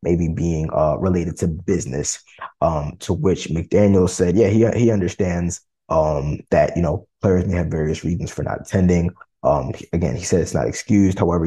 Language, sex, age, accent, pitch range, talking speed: English, male, 20-39, American, 85-100 Hz, 185 wpm